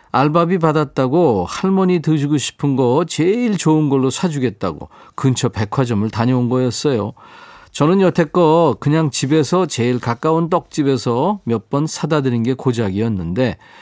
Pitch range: 125-160 Hz